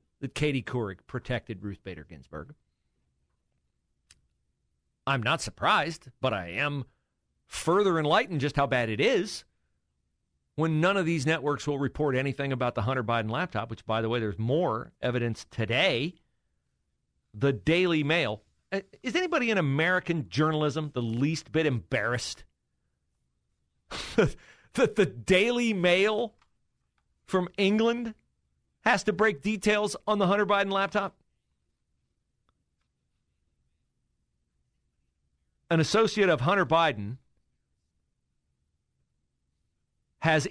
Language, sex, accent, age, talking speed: English, male, American, 40-59, 110 wpm